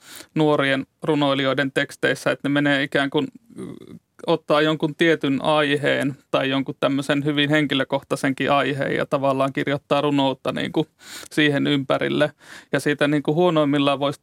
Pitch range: 140-155 Hz